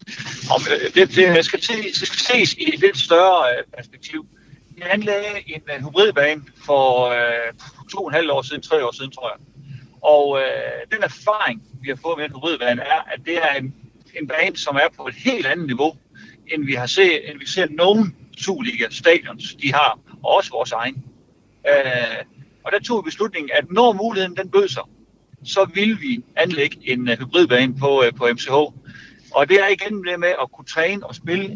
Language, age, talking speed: Danish, 60-79, 195 wpm